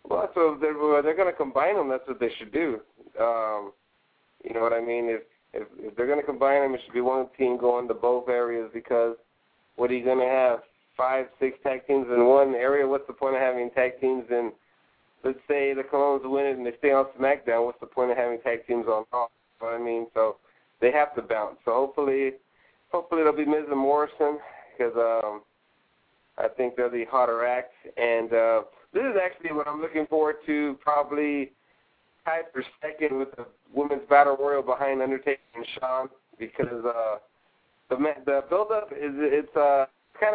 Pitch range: 125-150 Hz